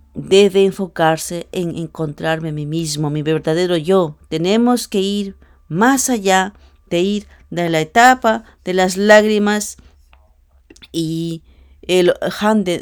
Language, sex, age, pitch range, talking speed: English, female, 40-59, 145-210 Hz, 120 wpm